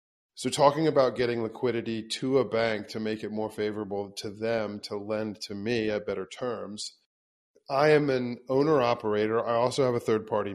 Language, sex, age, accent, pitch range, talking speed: English, male, 40-59, American, 105-125 Hz, 175 wpm